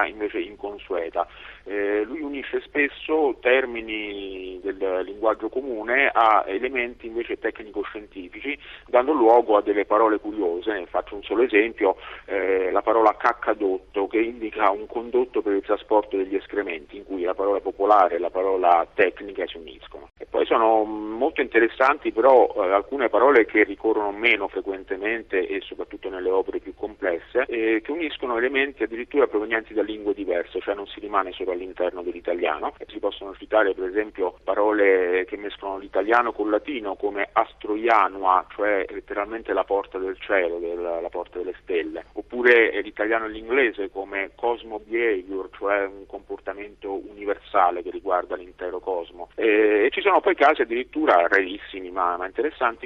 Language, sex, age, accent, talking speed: Italian, male, 40-59, native, 155 wpm